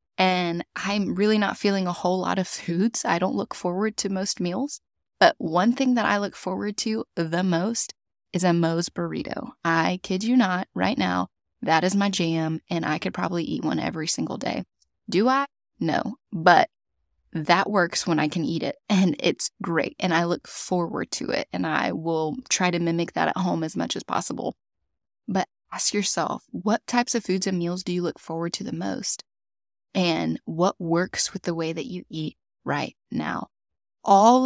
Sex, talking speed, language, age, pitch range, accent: female, 195 wpm, English, 20-39, 170-205 Hz, American